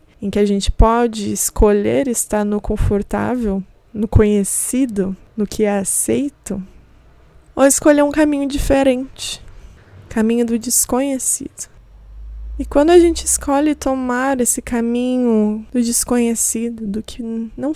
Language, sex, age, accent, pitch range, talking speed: Portuguese, female, 20-39, Brazilian, 210-265 Hz, 120 wpm